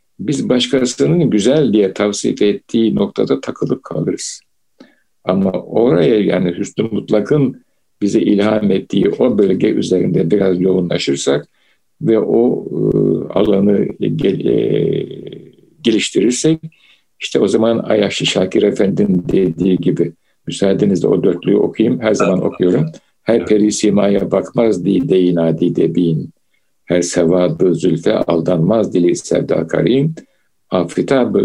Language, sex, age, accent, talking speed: Turkish, male, 60-79, native, 105 wpm